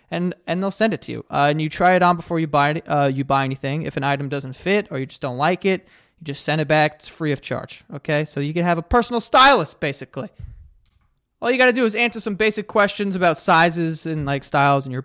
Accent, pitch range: American, 140-180 Hz